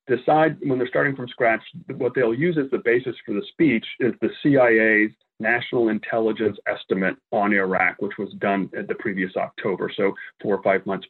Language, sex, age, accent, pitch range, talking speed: English, male, 40-59, American, 115-175 Hz, 190 wpm